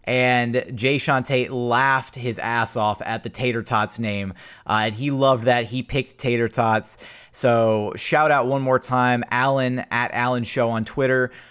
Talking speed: 170 wpm